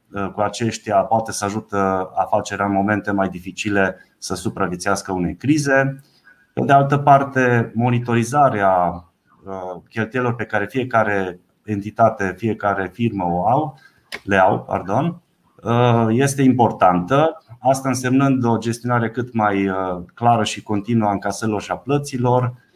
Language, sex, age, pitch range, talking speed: Romanian, male, 30-49, 95-125 Hz, 120 wpm